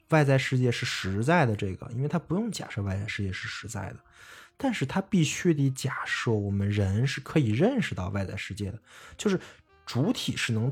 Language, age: Chinese, 20-39